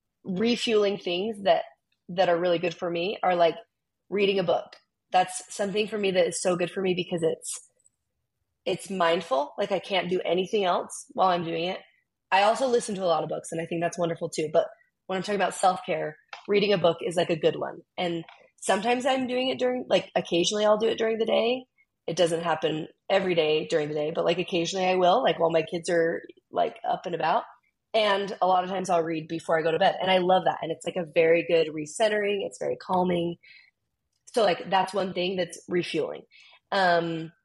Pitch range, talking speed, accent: 170-205 Hz, 220 wpm, American